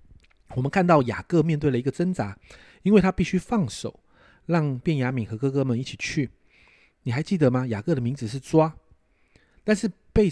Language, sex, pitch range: Chinese, male, 115-155 Hz